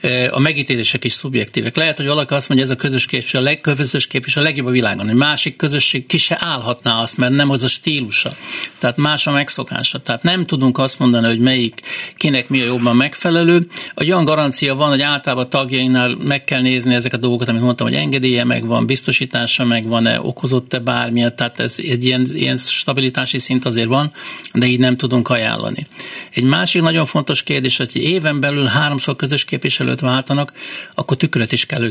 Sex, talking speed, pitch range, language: male, 190 wpm, 125-145 Hz, Hungarian